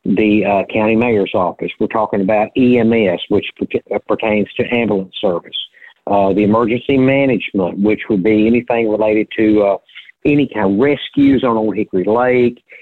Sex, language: male, English